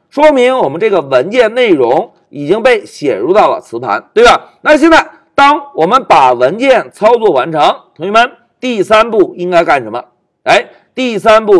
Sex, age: male, 50-69